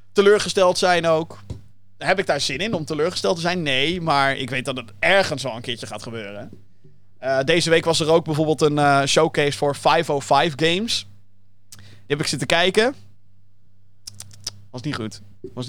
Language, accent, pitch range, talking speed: Dutch, Dutch, 100-165 Hz, 175 wpm